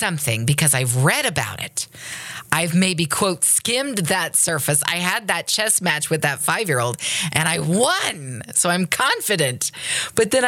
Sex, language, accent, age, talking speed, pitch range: female, English, American, 40-59, 160 wpm, 130-165 Hz